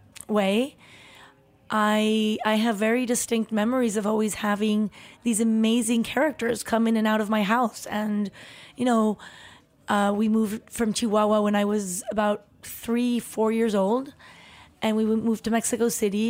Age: 30-49